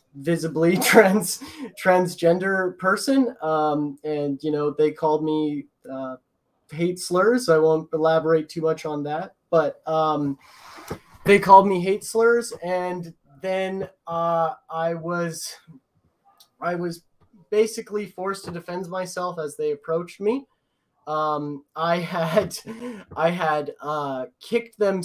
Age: 20-39